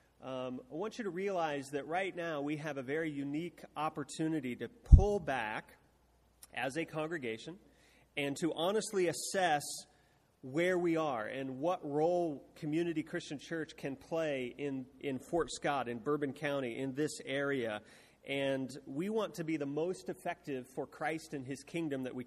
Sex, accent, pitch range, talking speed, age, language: male, American, 135-160 Hz, 165 wpm, 30-49, English